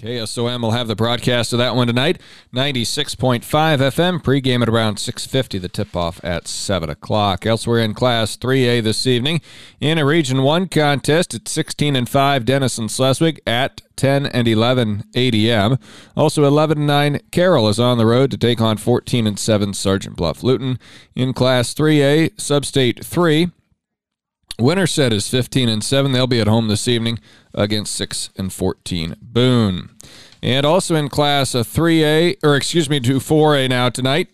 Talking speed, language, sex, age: 150 wpm, English, male, 40-59